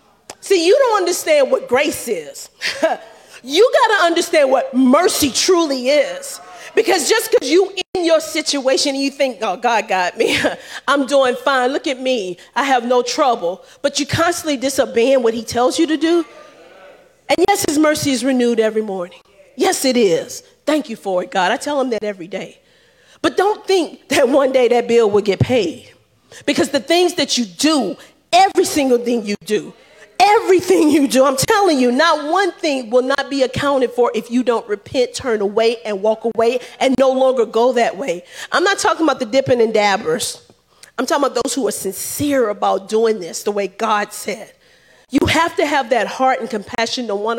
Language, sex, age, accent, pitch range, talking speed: English, female, 40-59, American, 230-330 Hz, 195 wpm